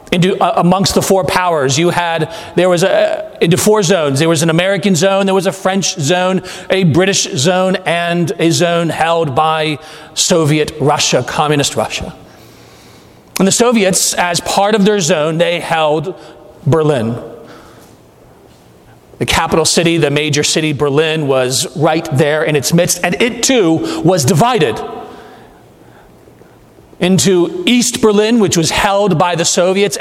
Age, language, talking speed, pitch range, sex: 40-59, English, 150 wpm, 160-210 Hz, male